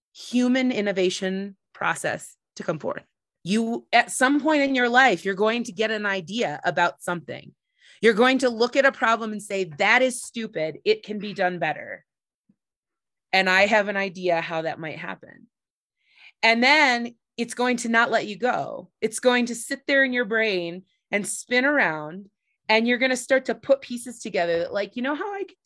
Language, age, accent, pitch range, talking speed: English, 30-49, American, 185-250 Hz, 190 wpm